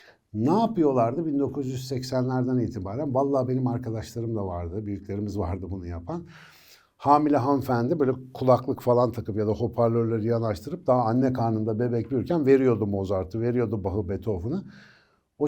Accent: native